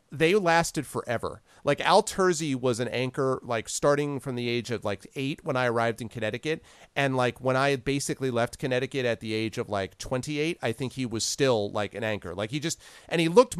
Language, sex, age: English, male, 40-59